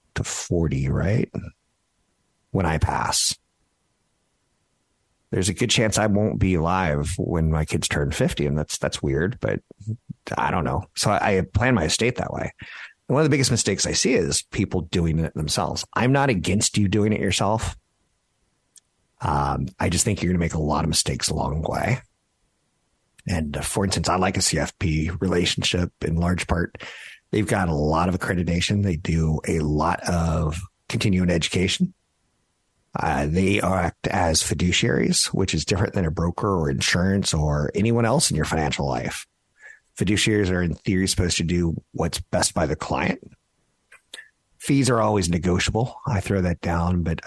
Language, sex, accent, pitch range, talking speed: English, male, American, 80-105 Hz, 170 wpm